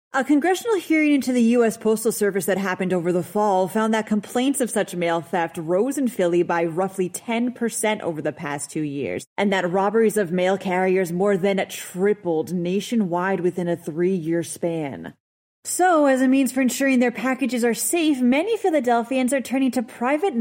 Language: English